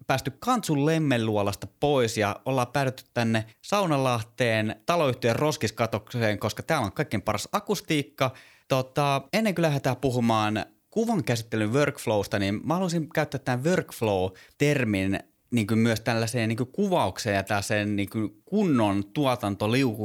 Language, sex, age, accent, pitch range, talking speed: Finnish, male, 20-39, native, 105-140 Hz, 125 wpm